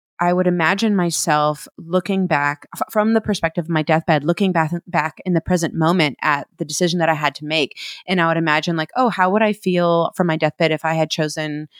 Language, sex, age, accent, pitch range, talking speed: English, female, 30-49, American, 150-175 Hz, 230 wpm